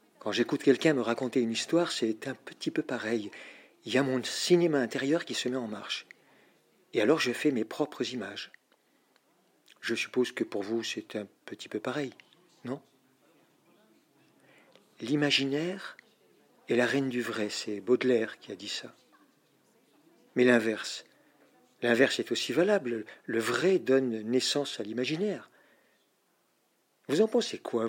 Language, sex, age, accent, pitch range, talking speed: French, male, 50-69, French, 120-160 Hz, 150 wpm